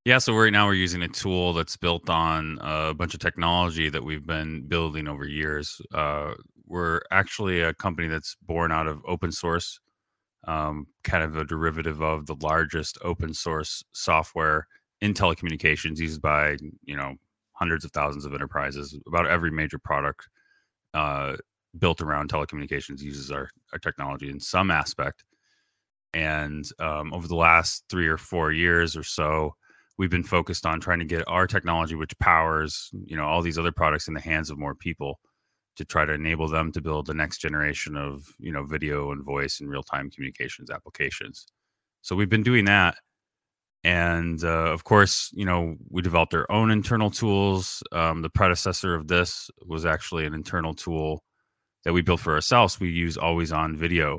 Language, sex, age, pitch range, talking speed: English, male, 30-49, 75-90 Hz, 180 wpm